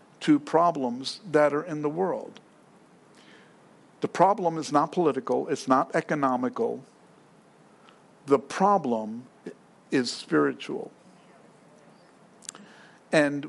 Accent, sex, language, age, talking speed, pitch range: American, male, English, 50-69, 90 wpm, 145-200 Hz